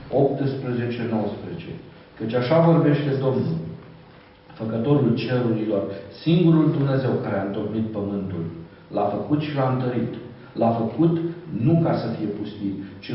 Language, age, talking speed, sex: Romanian, 50-69, 120 wpm, male